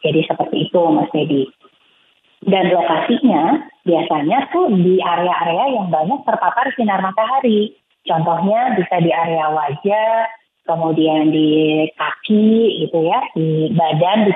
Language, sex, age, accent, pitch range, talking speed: Indonesian, female, 30-49, native, 160-205 Hz, 120 wpm